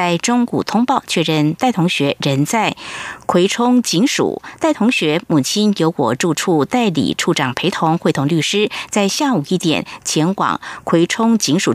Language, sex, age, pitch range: Chinese, female, 50-69, 155-225 Hz